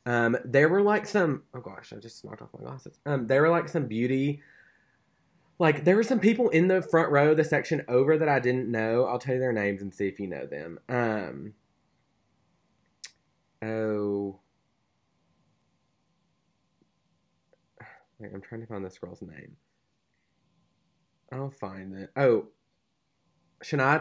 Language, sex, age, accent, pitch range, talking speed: English, male, 20-39, American, 95-125 Hz, 155 wpm